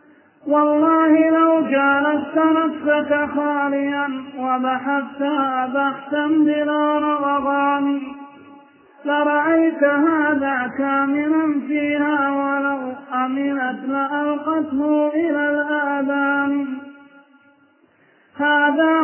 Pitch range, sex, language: 275-300 Hz, male, Arabic